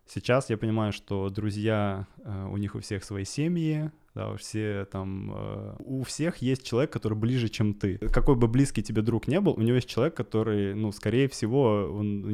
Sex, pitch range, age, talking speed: male, 105-130 Hz, 20-39, 195 wpm